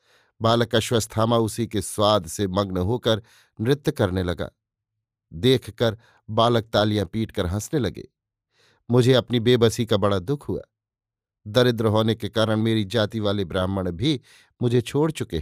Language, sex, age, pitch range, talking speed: Hindi, male, 50-69, 105-125 Hz, 140 wpm